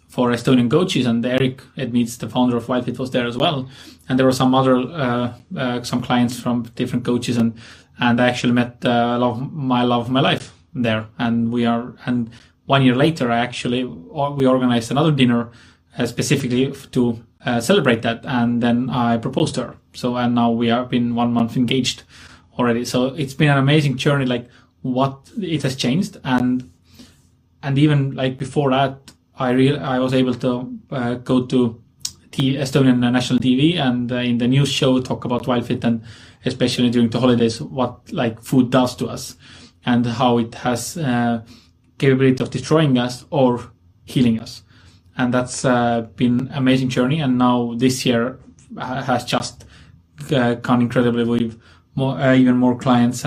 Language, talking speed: English, 180 wpm